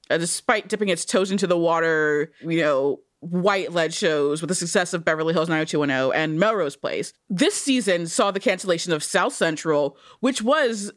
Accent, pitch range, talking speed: American, 165-225 Hz, 175 wpm